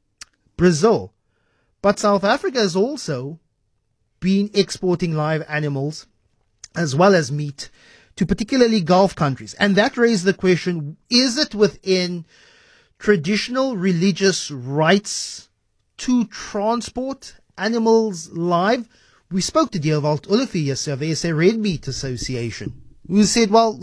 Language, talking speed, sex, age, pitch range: English, 110 wpm, male, 30-49, 155-205 Hz